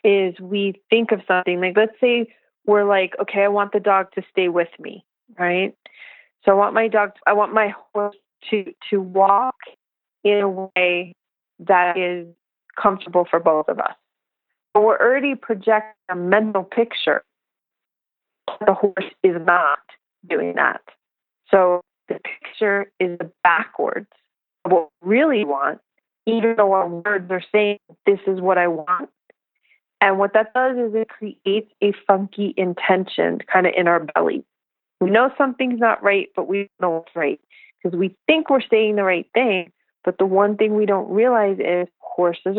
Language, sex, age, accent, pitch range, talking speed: English, female, 30-49, American, 185-220 Hz, 165 wpm